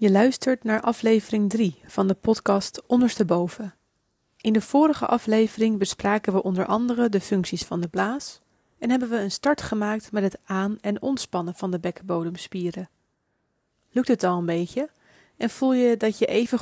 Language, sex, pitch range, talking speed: Dutch, female, 180-225 Hz, 170 wpm